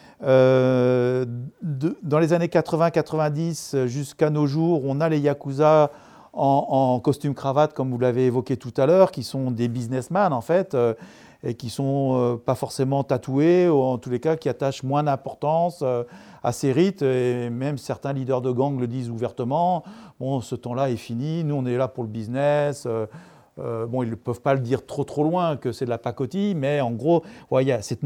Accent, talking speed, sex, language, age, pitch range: French, 215 wpm, male, French, 40-59, 130-165 Hz